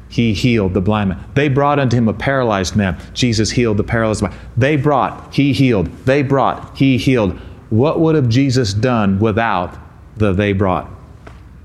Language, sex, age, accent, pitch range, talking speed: English, male, 40-59, American, 95-135 Hz, 175 wpm